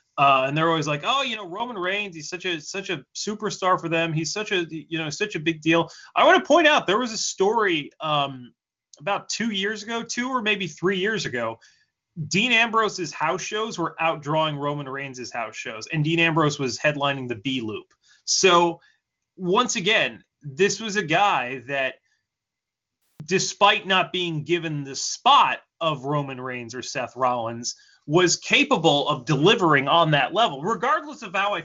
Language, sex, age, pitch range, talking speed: English, male, 20-39, 140-200 Hz, 180 wpm